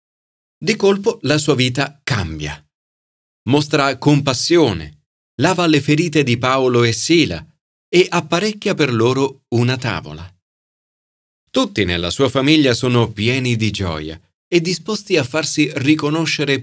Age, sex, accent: 40-59, male, native